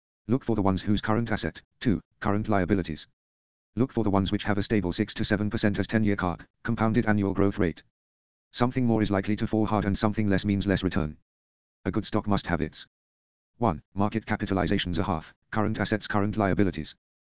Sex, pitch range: male, 80-110 Hz